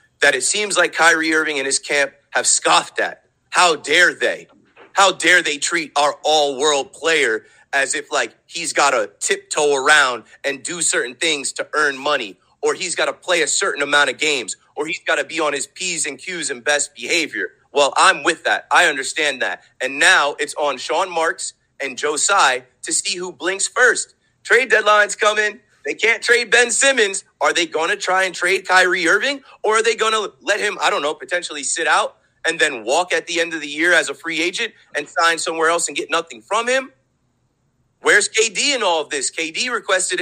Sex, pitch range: male, 165-250 Hz